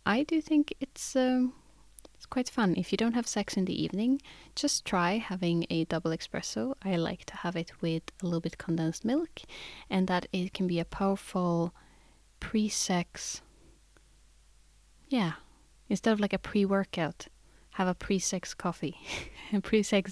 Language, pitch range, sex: English, 175-225 Hz, female